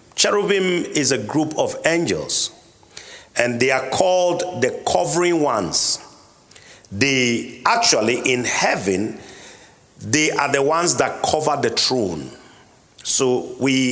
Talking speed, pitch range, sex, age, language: 115 wpm, 125-170 Hz, male, 50-69, English